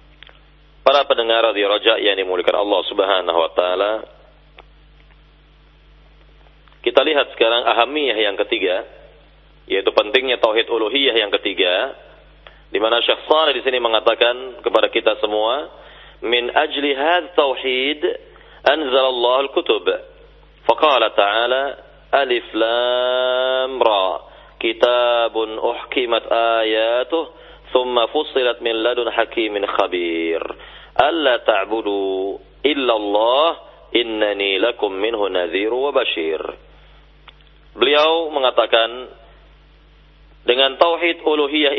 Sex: male